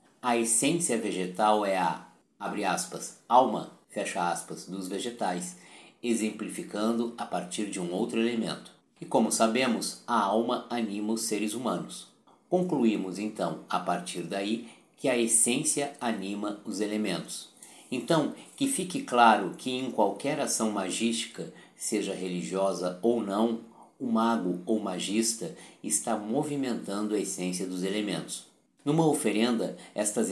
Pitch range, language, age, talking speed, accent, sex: 95-115 Hz, Portuguese, 50-69, 130 wpm, Brazilian, male